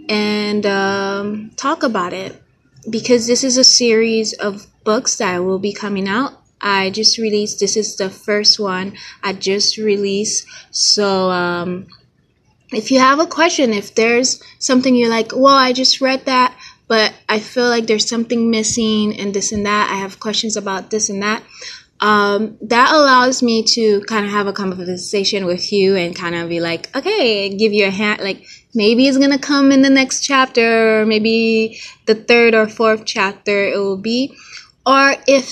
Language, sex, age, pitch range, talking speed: English, female, 20-39, 205-245 Hz, 180 wpm